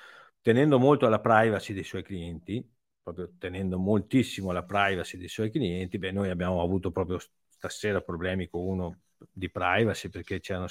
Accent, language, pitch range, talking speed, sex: native, Italian, 100-130 Hz, 165 wpm, male